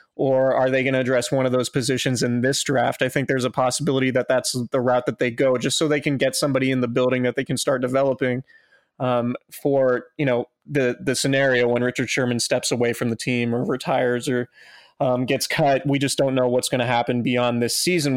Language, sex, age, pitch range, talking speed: English, male, 20-39, 125-140 Hz, 235 wpm